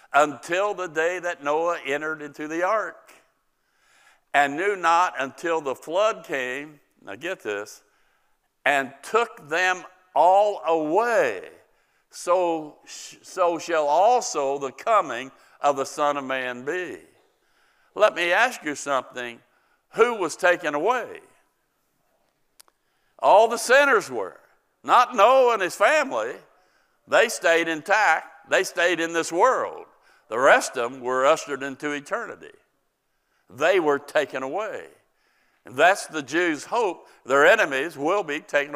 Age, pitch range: 60-79, 145-200 Hz